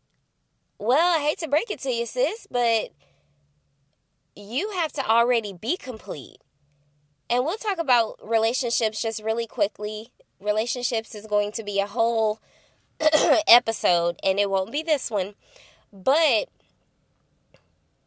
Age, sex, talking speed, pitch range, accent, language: 20-39, female, 130 wpm, 205-260 Hz, American, English